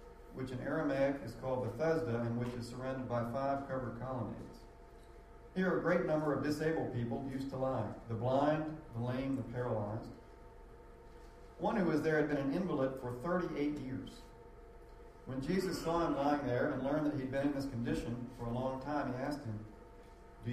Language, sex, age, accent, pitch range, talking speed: English, male, 40-59, American, 115-150 Hz, 185 wpm